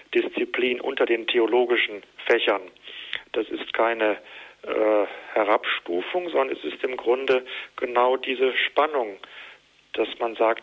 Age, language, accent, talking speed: 40-59, German, German, 120 wpm